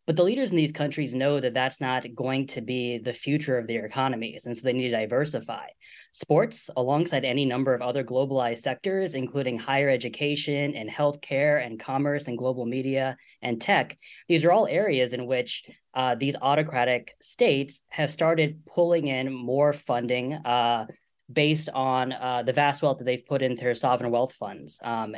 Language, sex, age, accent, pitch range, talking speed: English, female, 10-29, American, 125-145 Hz, 180 wpm